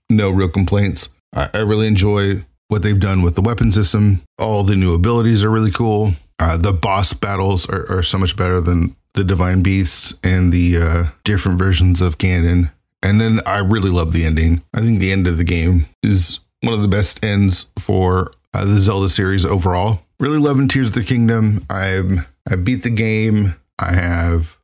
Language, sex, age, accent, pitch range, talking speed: English, male, 30-49, American, 85-105 Hz, 195 wpm